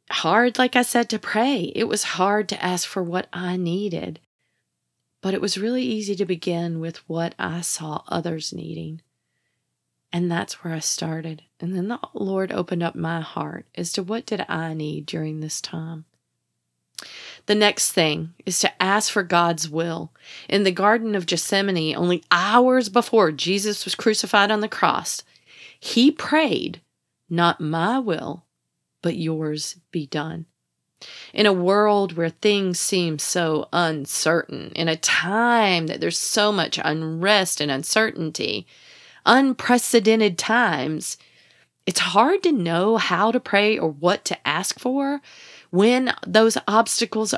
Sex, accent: female, American